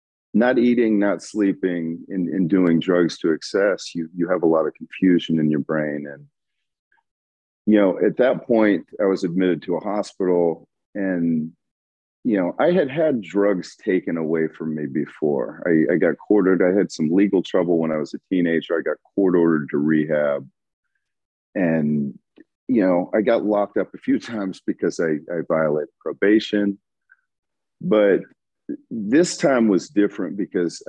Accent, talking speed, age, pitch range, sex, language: American, 165 wpm, 40-59, 80-100 Hz, male, English